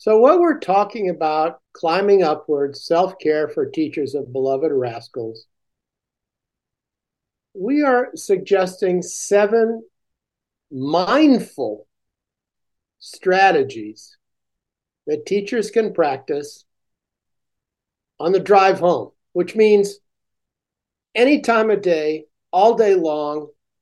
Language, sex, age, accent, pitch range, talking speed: English, male, 60-79, American, 155-230 Hz, 90 wpm